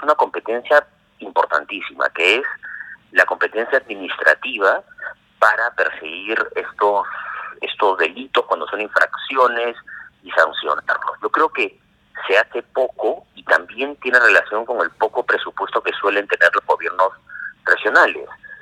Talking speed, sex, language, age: 120 wpm, male, Spanish, 40-59